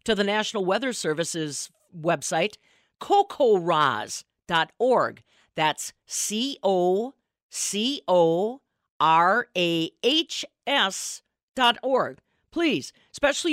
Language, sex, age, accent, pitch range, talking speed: English, female, 50-69, American, 185-270 Hz, 50 wpm